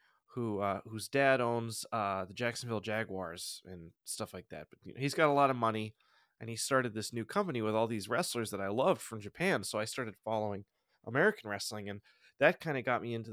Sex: male